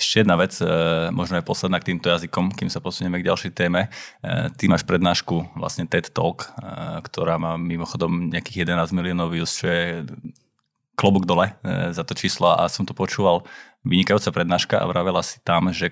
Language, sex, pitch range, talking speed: Slovak, male, 85-95 Hz, 175 wpm